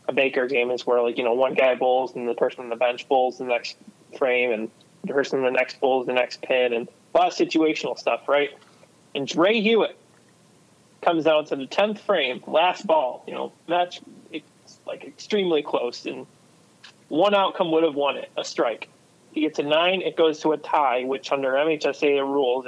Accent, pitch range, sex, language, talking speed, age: American, 130-160 Hz, male, English, 205 wpm, 20-39